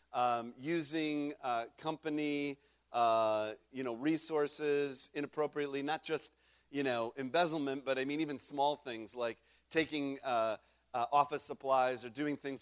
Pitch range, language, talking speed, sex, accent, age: 120-185 Hz, English, 140 wpm, male, American, 50-69